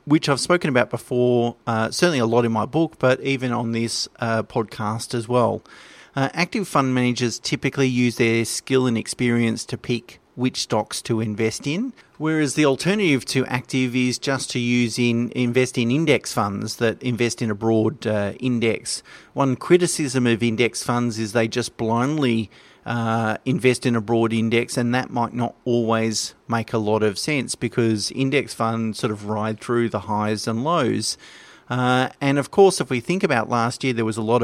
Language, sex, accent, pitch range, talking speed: English, male, Australian, 115-130 Hz, 190 wpm